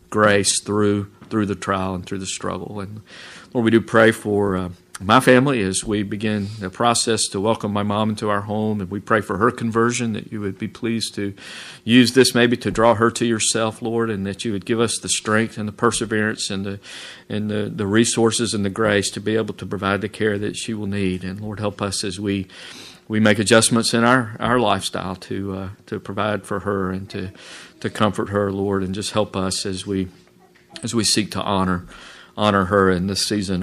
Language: English